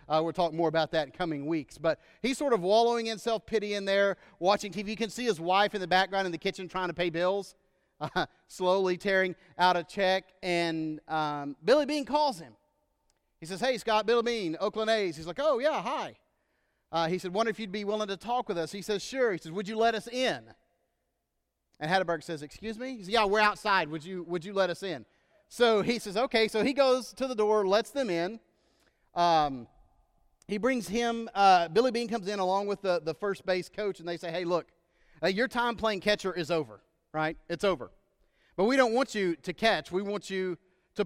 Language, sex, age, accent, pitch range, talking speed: English, male, 30-49, American, 170-215 Hz, 225 wpm